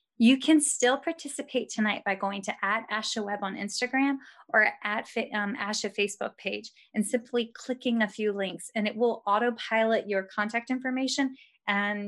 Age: 20-39